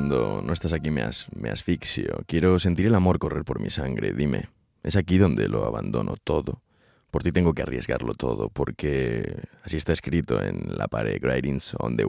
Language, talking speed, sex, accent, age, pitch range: Spanish, 190 wpm, male, Spanish, 30-49, 70-90 Hz